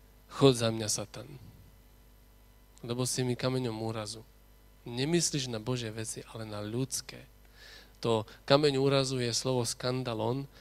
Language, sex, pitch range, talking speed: Slovak, male, 110-145 Hz, 125 wpm